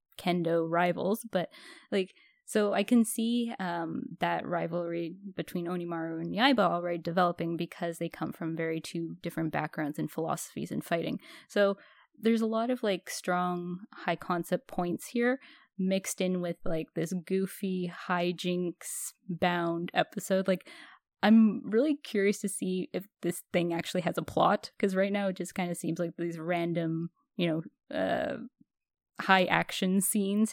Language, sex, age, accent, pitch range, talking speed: English, female, 10-29, American, 175-215 Hz, 155 wpm